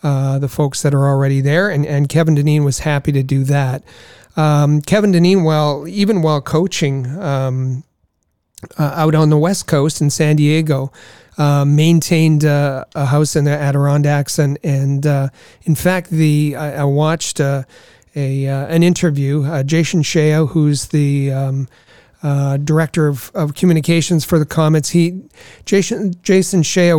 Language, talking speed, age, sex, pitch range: English, 160 wpm, 40-59, male, 140-165 Hz